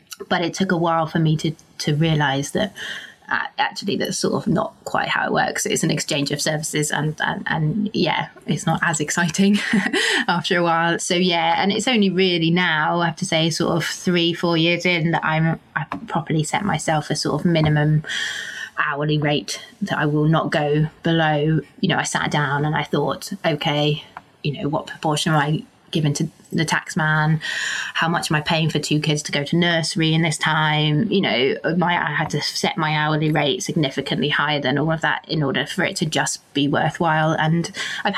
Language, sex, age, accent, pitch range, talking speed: English, female, 20-39, British, 155-180 Hz, 210 wpm